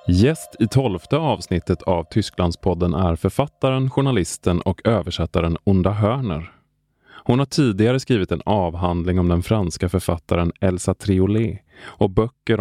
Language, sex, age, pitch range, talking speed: Swedish, male, 20-39, 85-110 Hz, 130 wpm